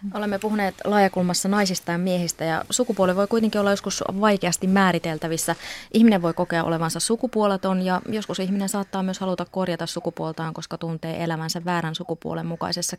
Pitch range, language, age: 165-195 Hz, Finnish, 20-39